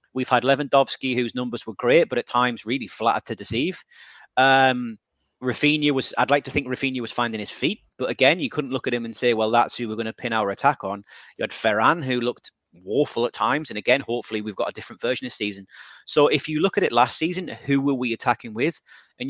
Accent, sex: British, male